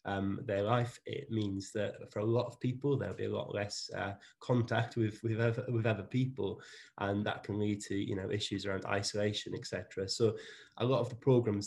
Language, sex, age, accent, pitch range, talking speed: English, male, 20-39, British, 95-115 Hz, 210 wpm